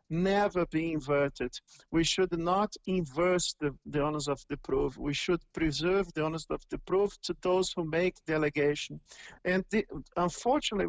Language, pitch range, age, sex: English, 160-205 Hz, 50-69, male